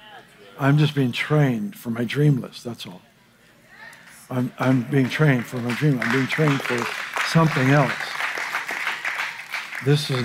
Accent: American